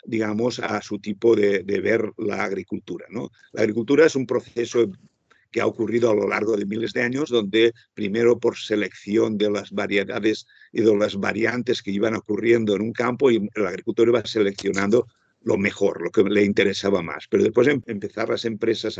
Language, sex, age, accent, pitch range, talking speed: Spanish, male, 50-69, Spanish, 105-120 Hz, 185 wpm